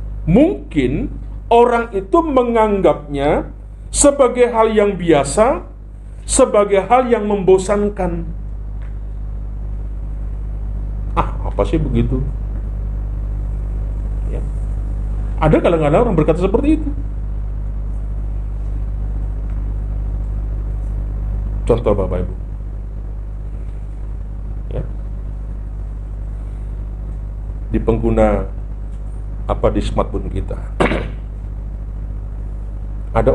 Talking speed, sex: 65 wpm, male